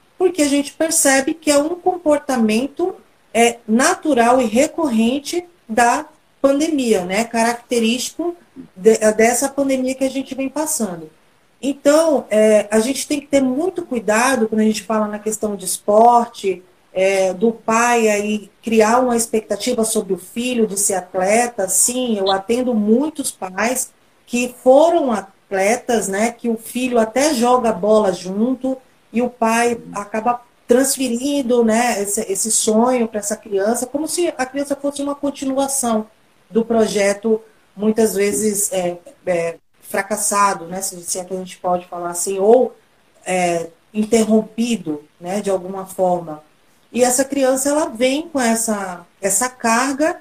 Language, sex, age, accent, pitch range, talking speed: Portuguese, female, 40-59, Brazilian, 210-270 Hz, 140 wpm